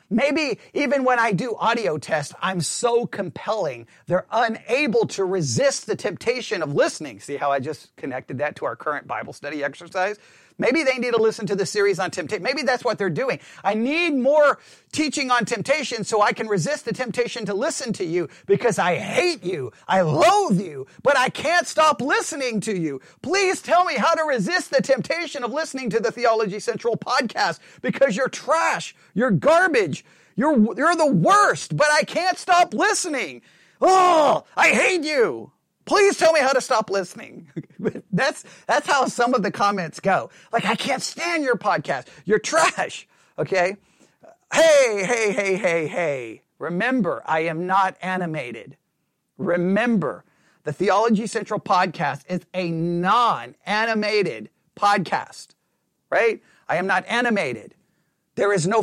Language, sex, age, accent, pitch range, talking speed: English, male, 40-59, American, 185-275 Hz, 160 wpm